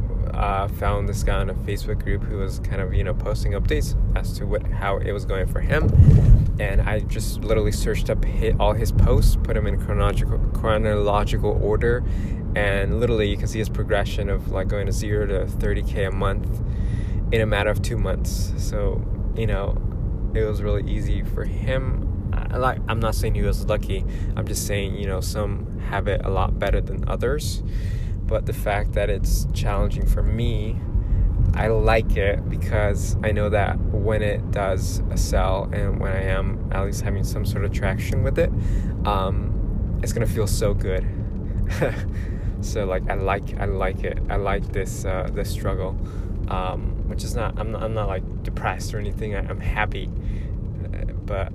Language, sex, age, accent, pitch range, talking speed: English, male, 20-39, American, 95-105 Hz, 185 wpm